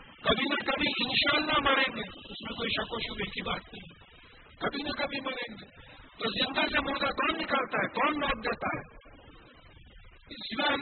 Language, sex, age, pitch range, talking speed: English, female, 50-69, 185-285 Hz, 155 wpm